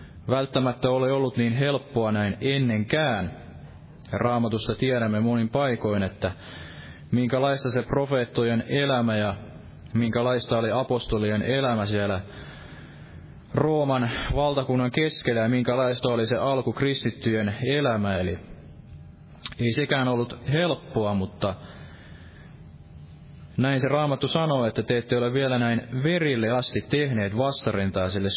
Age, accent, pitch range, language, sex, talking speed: 20-39, native, 105-135 Hz, Finnish, male, 110 wpm